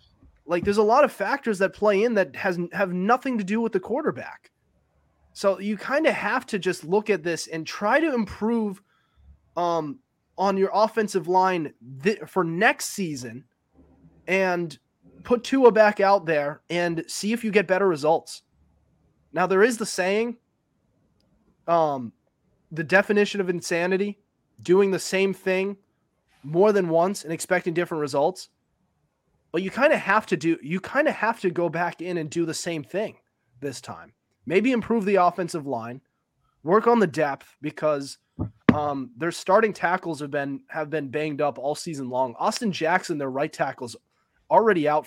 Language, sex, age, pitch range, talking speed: English, male, 20-39, 150-205 Hz, 170 wpm